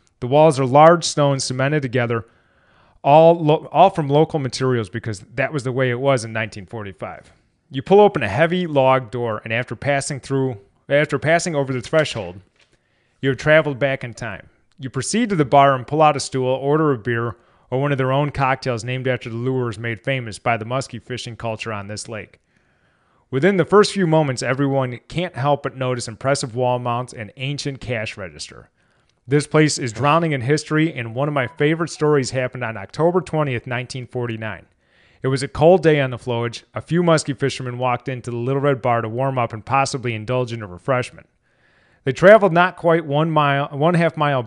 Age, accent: 30-49, American